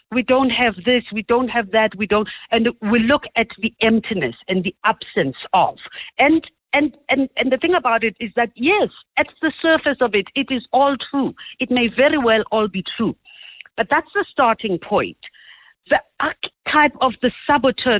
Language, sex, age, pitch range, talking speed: English, female, 50-69, 215-280 Hz, 190 wpm